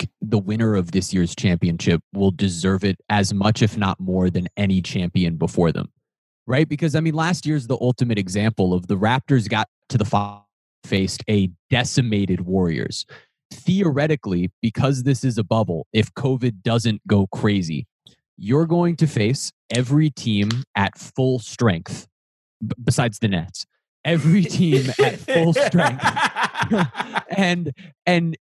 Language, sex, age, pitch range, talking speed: English, male, 20-39, 100-160 Hz, 150 wpm